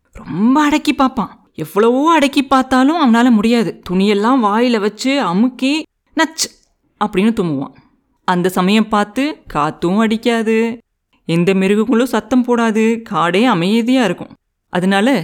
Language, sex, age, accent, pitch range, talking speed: Tamil, female, 30-49, native, 185-240 Hz, 110 wpm